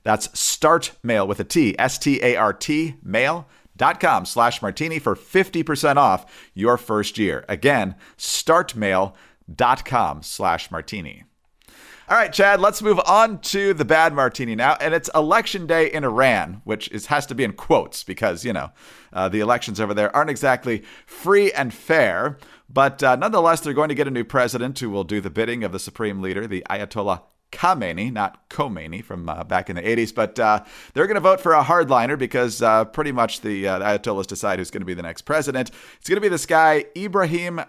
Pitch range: 110-160 Hz